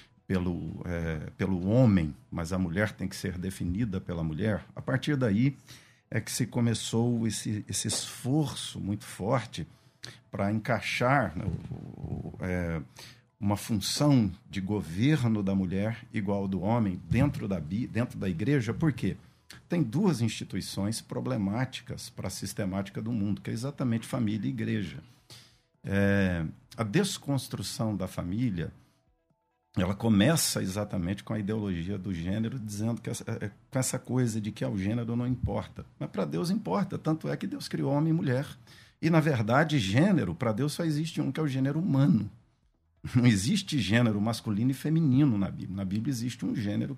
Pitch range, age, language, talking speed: 100-140 Hz, 50-69, Portuguese, 160 wpm